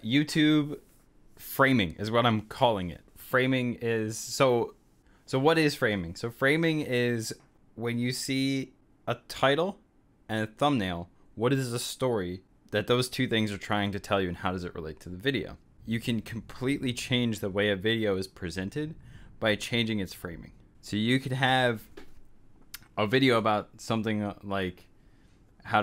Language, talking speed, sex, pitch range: English, 165 wpm, male, 100-120 Hz